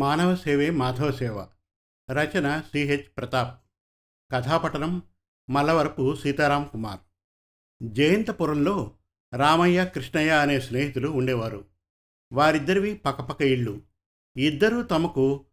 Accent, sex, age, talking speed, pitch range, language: native, male, 50-69, 75 wpm, 120-160 Hz, Telugu